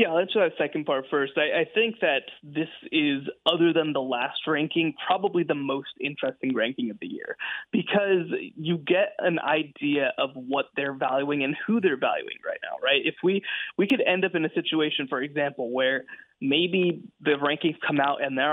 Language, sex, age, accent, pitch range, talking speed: English, male, 20-39, American, 145-185 Hz, 200 wpm